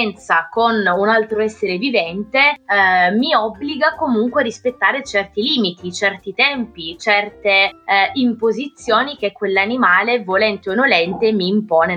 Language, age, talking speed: Italian, 20-39, 125 wpm